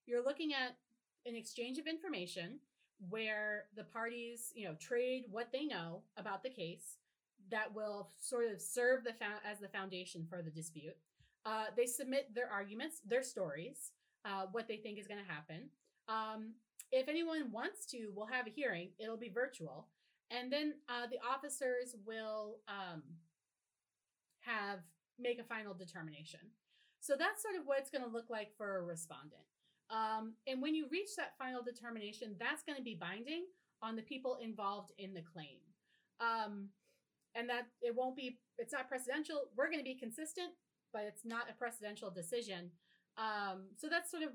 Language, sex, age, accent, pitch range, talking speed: English, female, 30-49, American, 200-255 Hz, 175 wpm